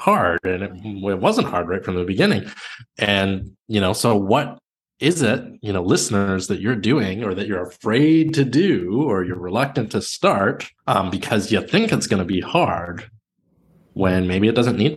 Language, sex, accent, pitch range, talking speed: English, male, American, 90-115 Hz, 190 wpm